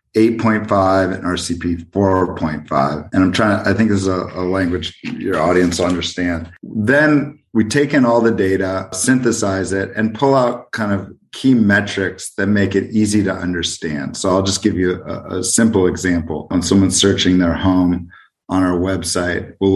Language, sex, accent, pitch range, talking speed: English, male, American, 90-100 Hz, 180 wpm